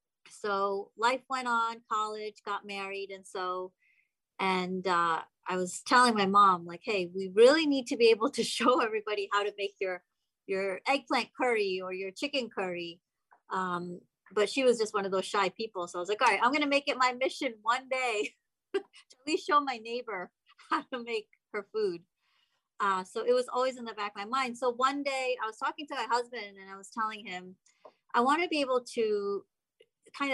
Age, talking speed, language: 30-49, 210 wpm, English